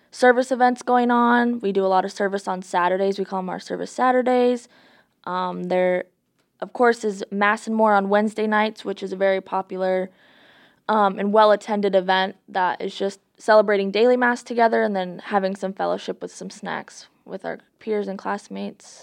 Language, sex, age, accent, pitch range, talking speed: English, female, 20-39, American, 185-215 Hz, 185 wpm